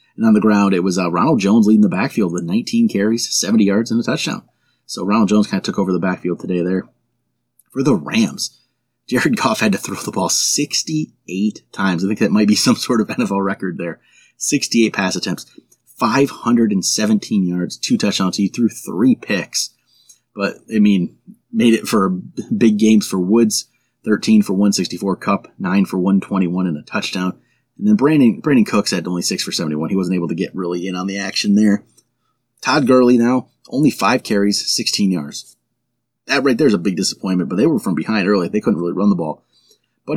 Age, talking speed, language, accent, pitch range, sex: 30-49, 200 wpm, English, American, 90-115 Hz, male